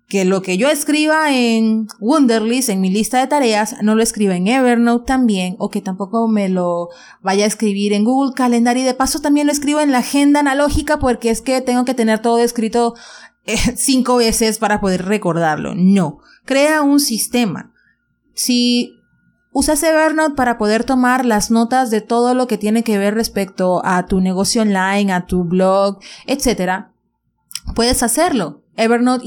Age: 30-49